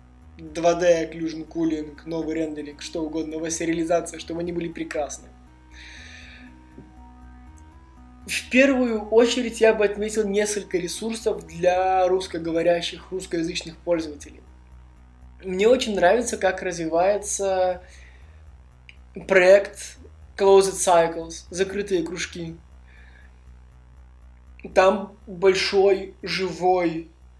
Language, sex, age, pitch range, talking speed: Russian, male, 20-39, 160-195 Hz, 85 wpm